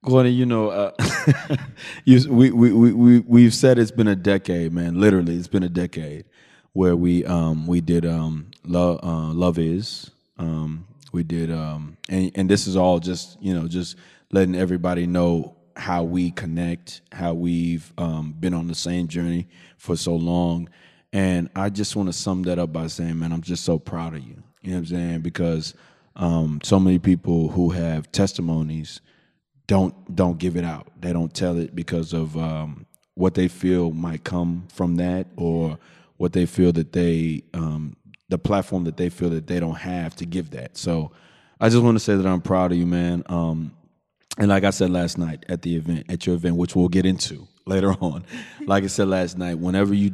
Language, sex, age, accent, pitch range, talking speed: English, male, 30-49, American, 85-95 Hz, 200 wpm